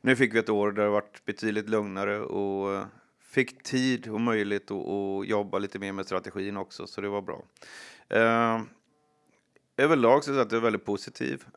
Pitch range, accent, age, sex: 100-115 Hz, native, 30-49, male